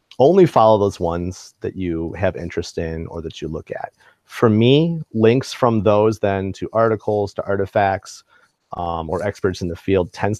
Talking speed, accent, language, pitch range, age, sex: 180 wpm, American, English, 90-110 Hz, 30-49, male